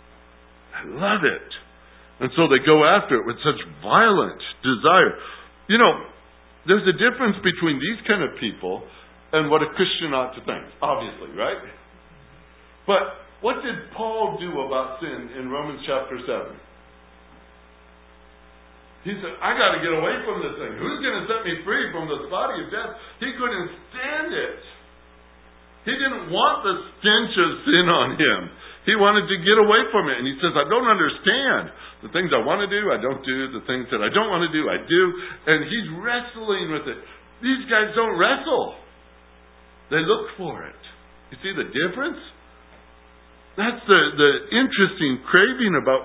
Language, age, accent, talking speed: English, 50-69, American, 170 wpm